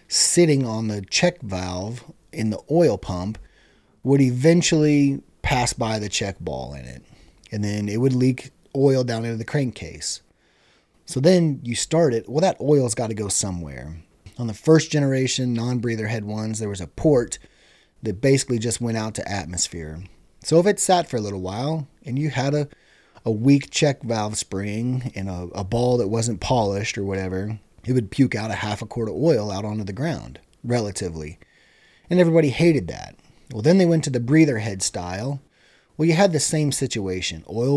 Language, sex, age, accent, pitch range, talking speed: English, male, 30-49, American, 100-135 Hz, 190 wpm